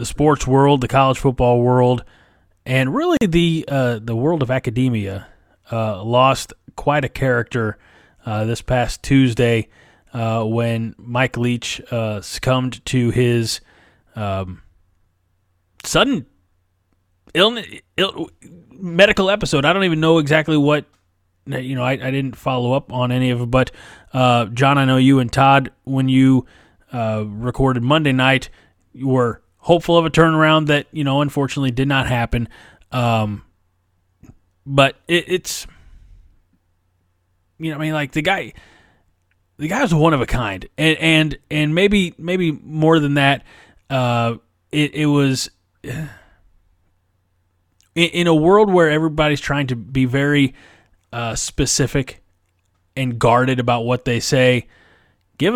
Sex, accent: male, American